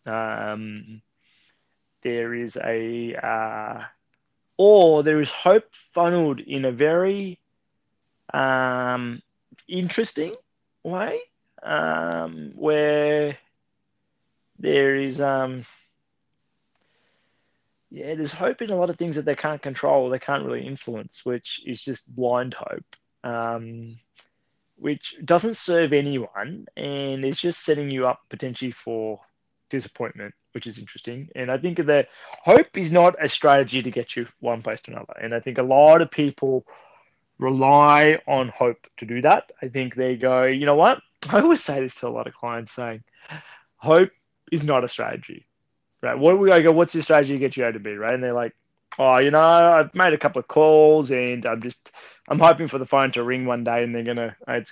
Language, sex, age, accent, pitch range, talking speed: English, male, 20-39, Australian, 120-155 Hz, 170 wpm